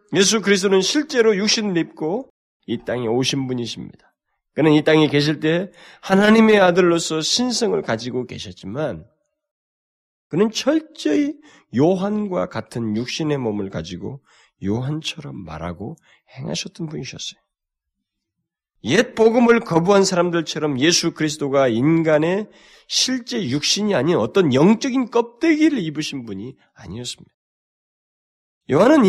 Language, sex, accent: Korean, male, native